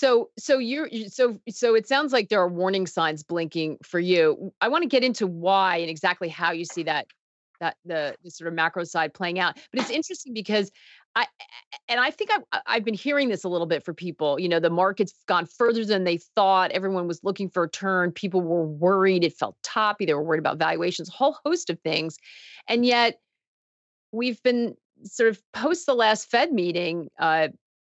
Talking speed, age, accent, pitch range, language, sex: 210 wpm, 40-59, American, 170-240 Hz, English, female